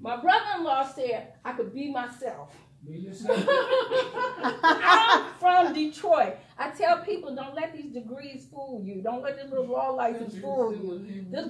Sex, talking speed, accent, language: female, 145 wpm, American, English